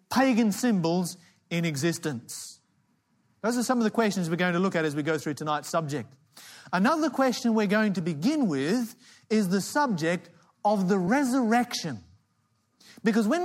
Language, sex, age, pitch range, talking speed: English, male, 30-49, 160-235 Hz, 160 wpm